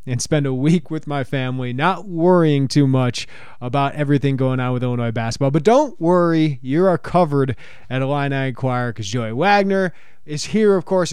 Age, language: 20-39, English